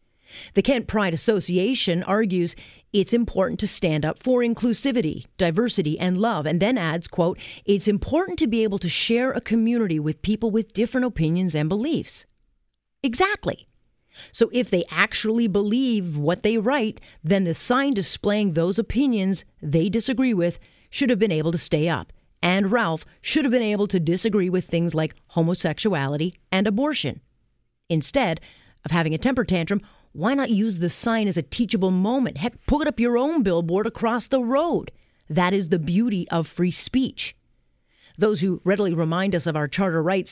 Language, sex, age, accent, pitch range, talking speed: English, female, 40-59, American, 170-225 Hz, 170 wpm